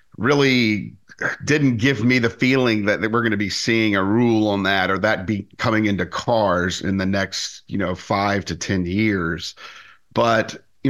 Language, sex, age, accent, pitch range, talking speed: English, male, 50-69, American, 95-110 Hz, 185 wpm